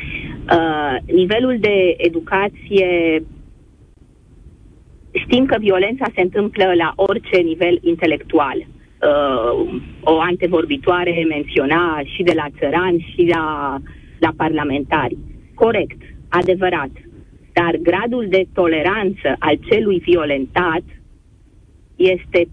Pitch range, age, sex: 165-195 Hz, 30-49, female